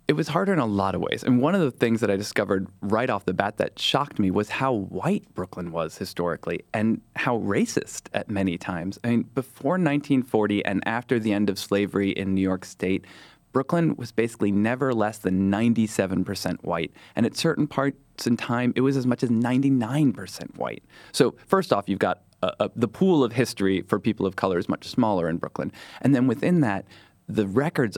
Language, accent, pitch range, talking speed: English, American, 100-130 Hz, 205 wpm